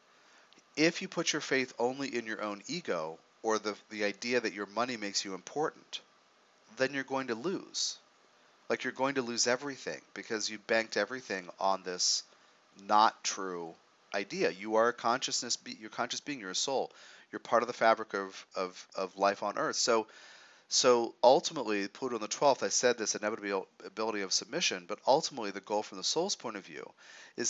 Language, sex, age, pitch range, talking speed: English, male, 40-59, 100-125 Hz, 185 wpm